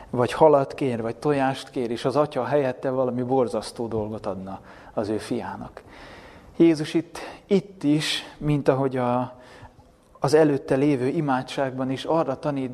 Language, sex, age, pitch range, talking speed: Hungarian, male, 30-49, 120-145 Hz, 140 wpm